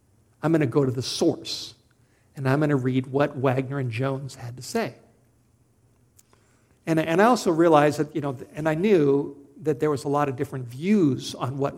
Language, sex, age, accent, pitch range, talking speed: English, male, 50-69, American, 125-155 Hz, 205 wpm